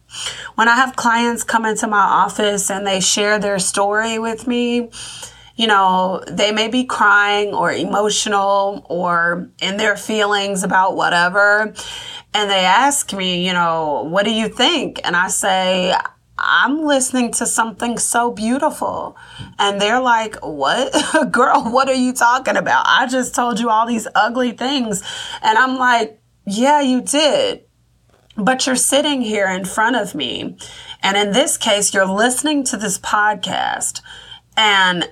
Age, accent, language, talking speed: 20-39, American, English, 155 wpm